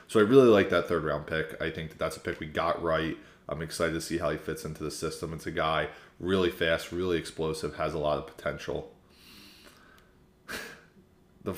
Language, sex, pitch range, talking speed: English, male, 85-100 Hz, 195 wpm